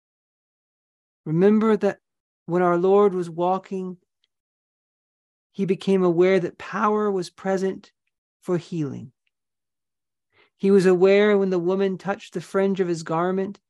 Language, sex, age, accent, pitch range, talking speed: English, male, 40-59, American, 170-200 Hz, 125 wpm